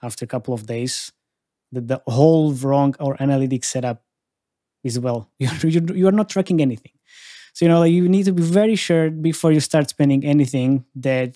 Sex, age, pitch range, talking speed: male, 20-39, 130-160 Hz, 190 wpm